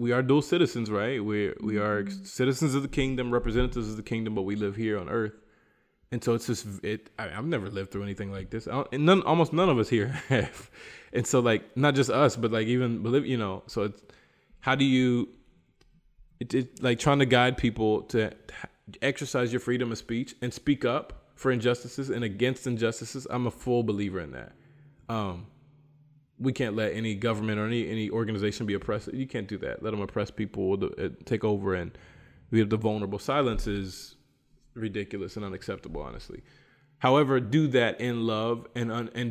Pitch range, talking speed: 105-125 Hz, 200 wpm